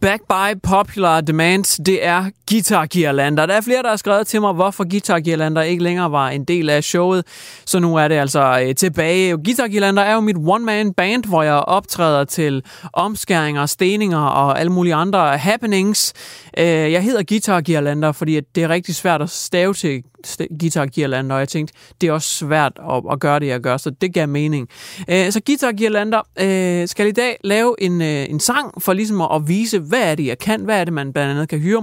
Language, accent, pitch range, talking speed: Danish, native, 155-205 Hz, 185 wpm